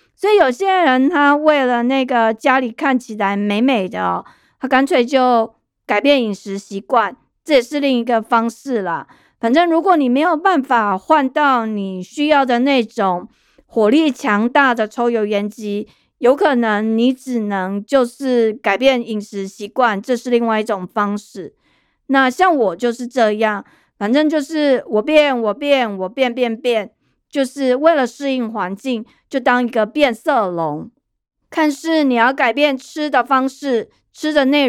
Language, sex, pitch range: Chinese, female, 215-280 Hz